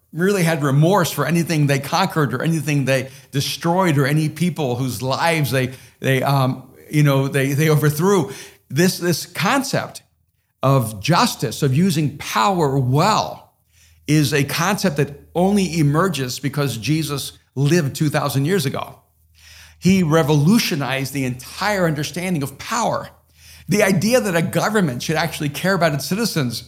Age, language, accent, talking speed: 50-69, English, American, 140 wpm